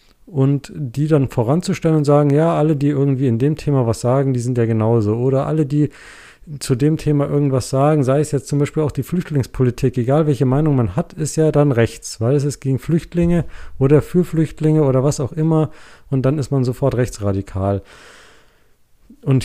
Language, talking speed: German, 195 wpm